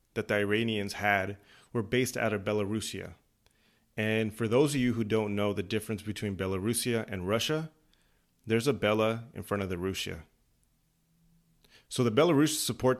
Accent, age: American, 30-49